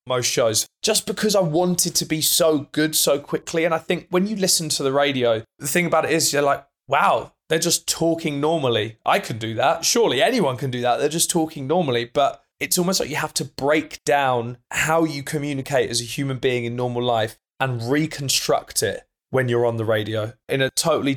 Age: 20-39